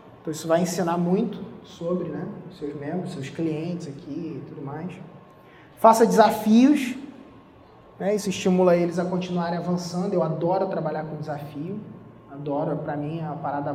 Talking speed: 150 wpm